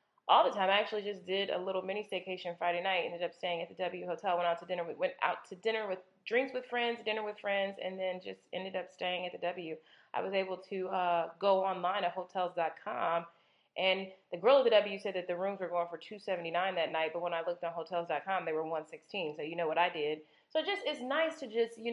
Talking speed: 260 wpm